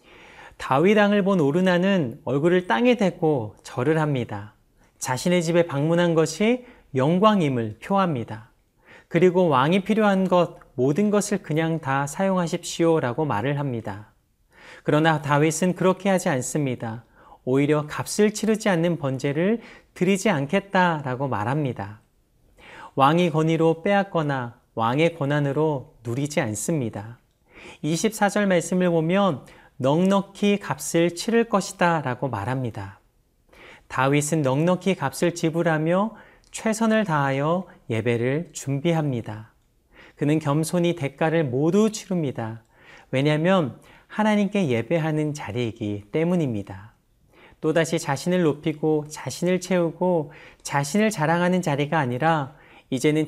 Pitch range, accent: 135-180 Hz, native